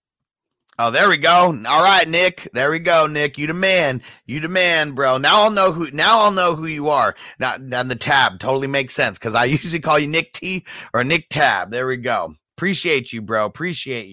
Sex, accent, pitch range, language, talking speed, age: male, American, 125-170 Hz, English, 220 wpm, 30-49